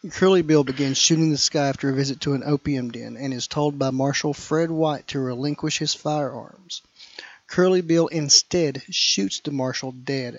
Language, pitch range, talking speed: English, 135-160 Hz, 180 wpm